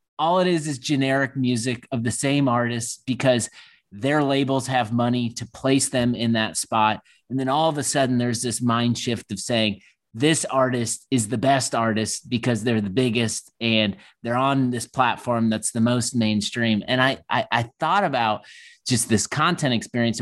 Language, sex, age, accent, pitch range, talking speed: English, male, 30-49, American, 110-130 Hz, 185 wpm